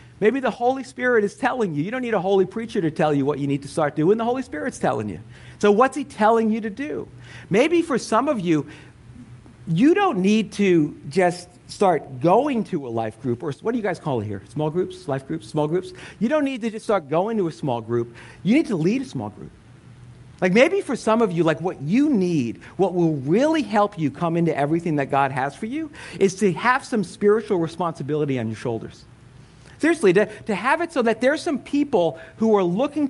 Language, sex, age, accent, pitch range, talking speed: English, male, 50-69, American, 155-230 Hz, 230 wpm